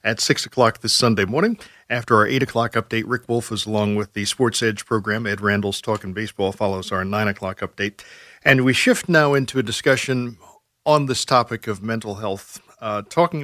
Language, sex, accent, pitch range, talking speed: English, male, American, 105-135 Hz, 195 wpm